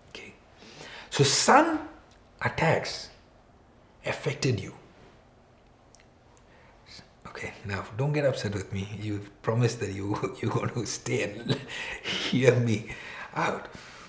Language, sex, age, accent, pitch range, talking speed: English, male, 60-79, Indian, 100-150 Hz, 100 wpm